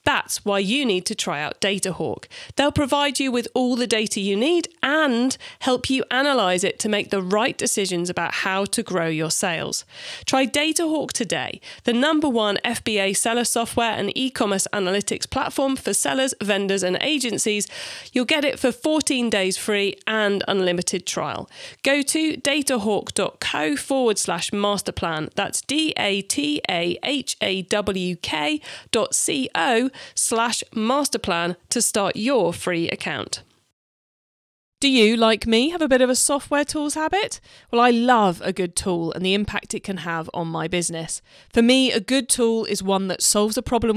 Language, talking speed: English, 155 wpm